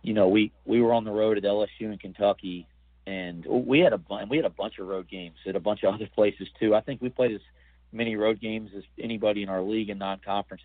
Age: 40-59